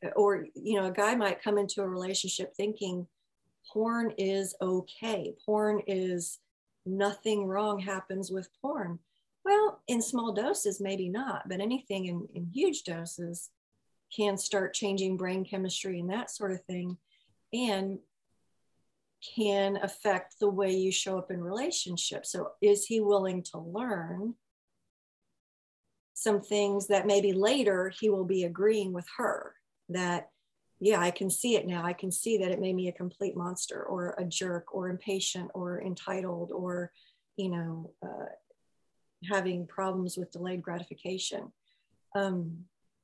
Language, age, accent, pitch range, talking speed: English, 40-59, American, 180-205 Hz, 145 wpm